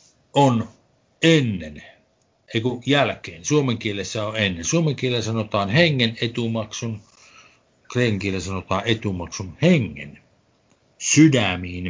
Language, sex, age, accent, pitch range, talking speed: Finnish, male, 60-79, native, 100-130 Hz, 85 wpm